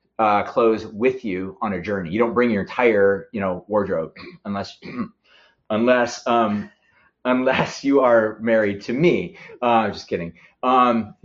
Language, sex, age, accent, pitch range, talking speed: English, male, 30-49, American, 100-145 Hz, 155 wpm